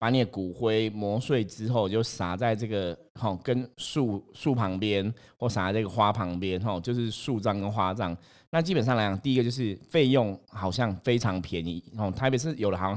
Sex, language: male, Chinese